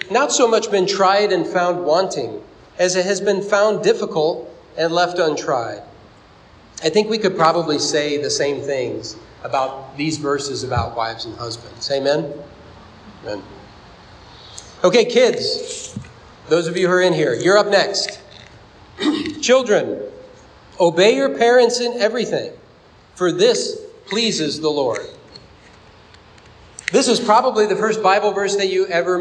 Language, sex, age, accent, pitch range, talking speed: English, male, 40-59, American, 160-225 Hz, 140 wpm